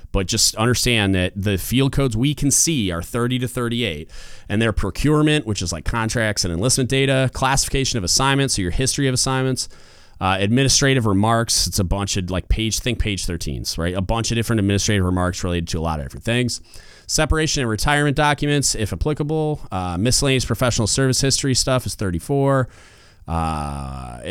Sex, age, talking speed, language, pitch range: male, 30-49, 180 wpm, English, 95-125 Hz